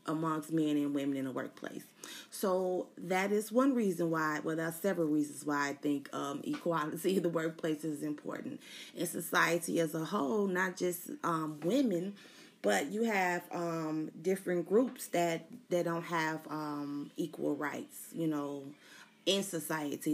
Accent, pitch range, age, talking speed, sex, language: American, 150-180 Hz, 30-49, 160 wpm, female, English